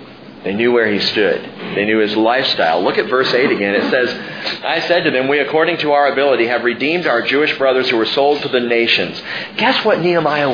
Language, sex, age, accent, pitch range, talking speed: English, male, 40-59, American, 150-245 Hz, 220 wpm